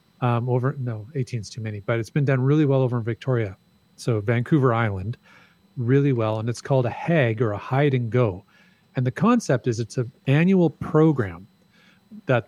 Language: English